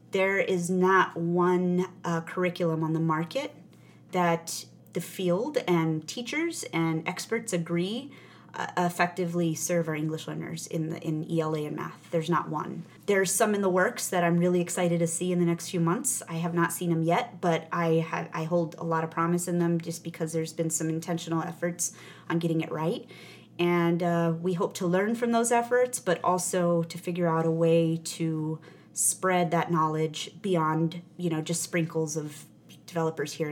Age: 30-49